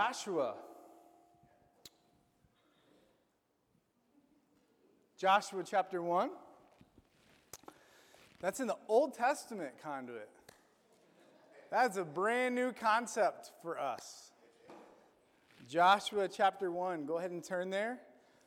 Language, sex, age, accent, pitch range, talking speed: English, male, 30-49, American, 190-265 Hz, 80 wpm